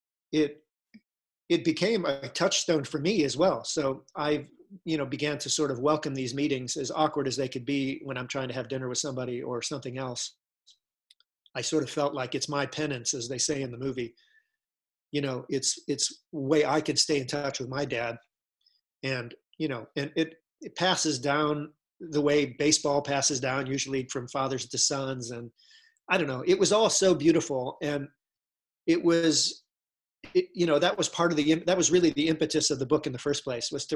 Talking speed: 205 wpm